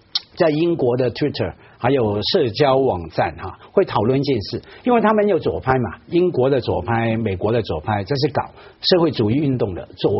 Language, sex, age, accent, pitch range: Chinese, male, 50-69, native, 120-185 Hz